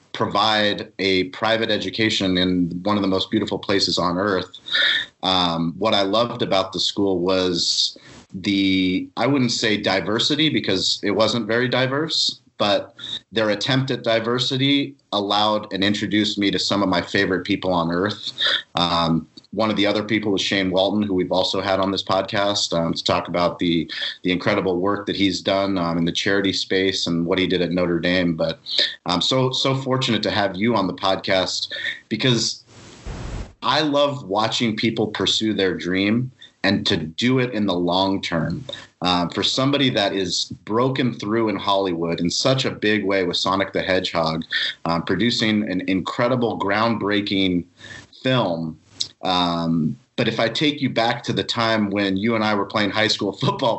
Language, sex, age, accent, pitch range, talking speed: English, male, 30-49, American, 95-120 Hz, 175 wpm